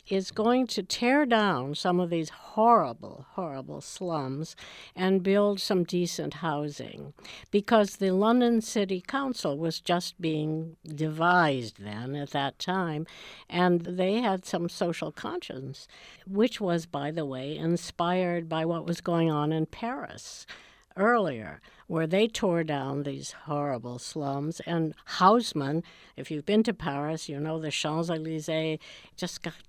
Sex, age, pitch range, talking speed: female, 60-79, 150-195 Hz, 140 wpm